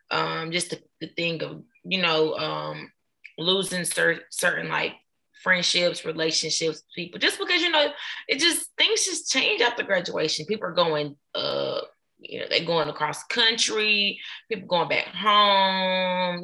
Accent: American